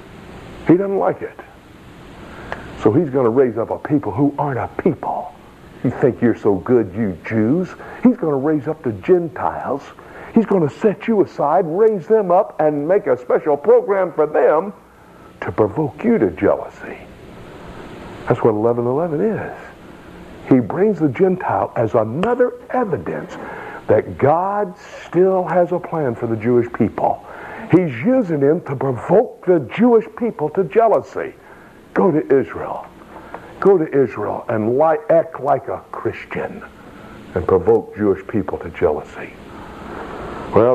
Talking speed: 145 wpm